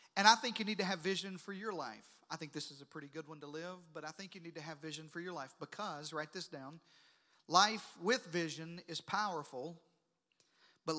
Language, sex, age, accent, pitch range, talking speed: English, male, 40-59, American, 165-205 Hz, 230 wpm